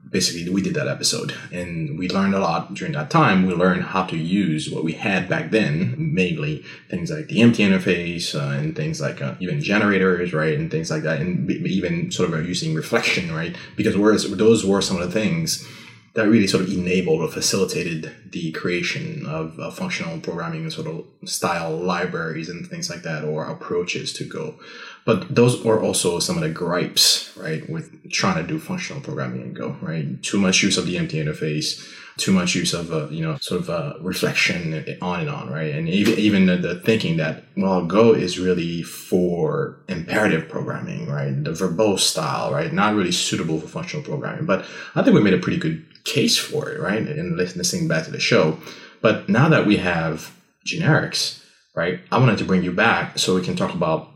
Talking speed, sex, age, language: 200 wpm, male, 20-39, English